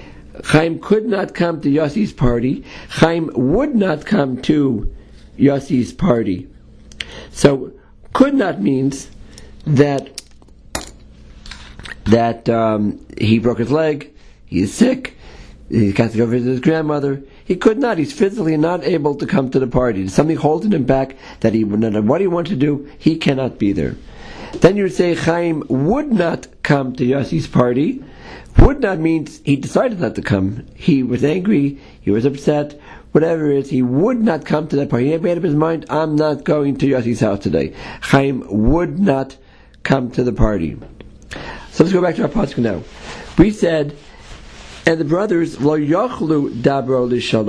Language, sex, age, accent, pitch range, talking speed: English, male, 50-69, American, 125-165 Hz, 170 wpm